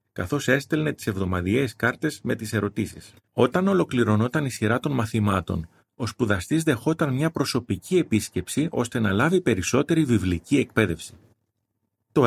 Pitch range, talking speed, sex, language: 105-145 Hz, 130 wpm, male, Greek